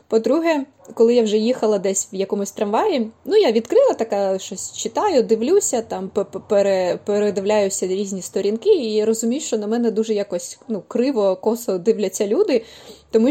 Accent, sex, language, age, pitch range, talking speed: native, female, Ukrainian, 20-39, 200-235 Hz, 145 wpm